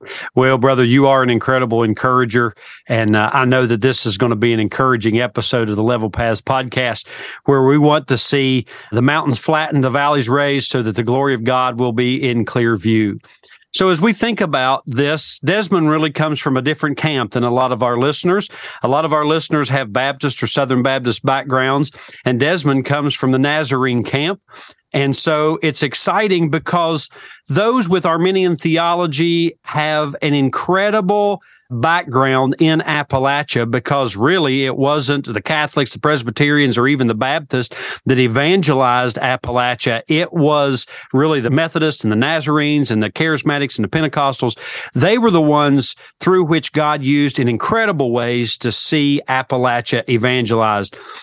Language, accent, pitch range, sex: English, American, 125-155 Hz, male